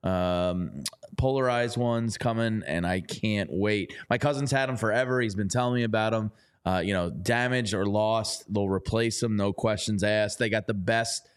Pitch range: 105-130 Hz